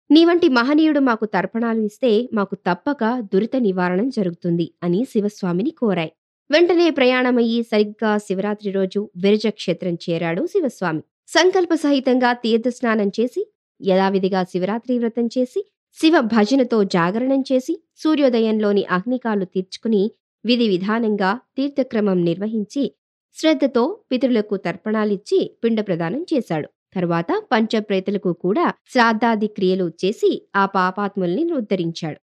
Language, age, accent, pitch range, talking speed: Telugu, 20-39, native, 185-255 Hz, 105 wpm